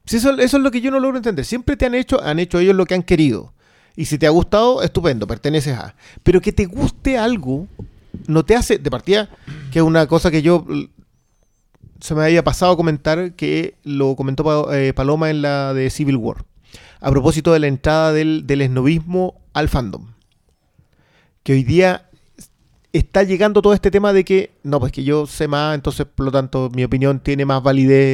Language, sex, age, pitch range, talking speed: Spanish, male, 30-49, 135-190 Hz, 205 wpm